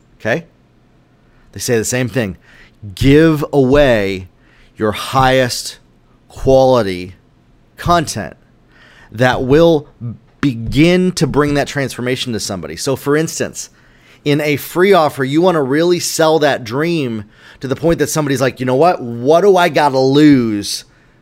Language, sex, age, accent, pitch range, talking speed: English, male, 30-49, American, 115-155 Hz, 140 wpm